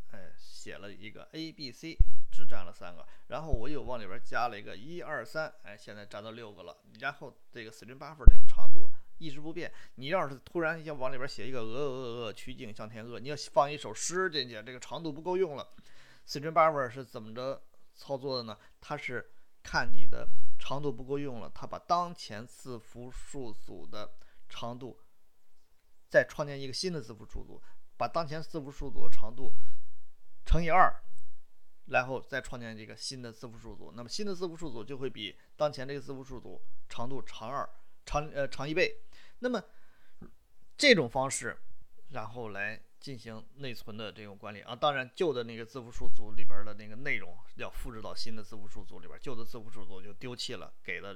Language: Chinese